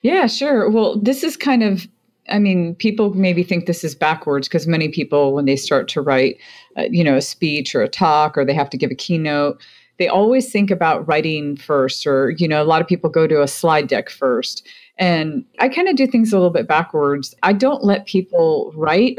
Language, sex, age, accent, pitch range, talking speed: English, female, 40-59, American, 150-200 Hz, 225 wpm